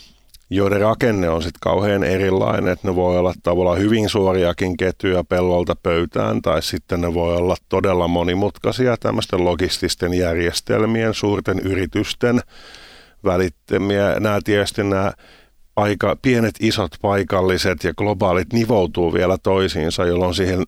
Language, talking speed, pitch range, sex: Finnish, 125 wpm, 90-105 Hz, male